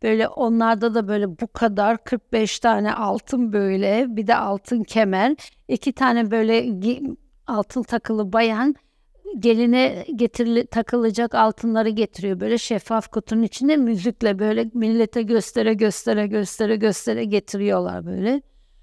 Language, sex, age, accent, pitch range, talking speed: Turkish, female, 60-79, native, 220-260 Hz, 120 wpm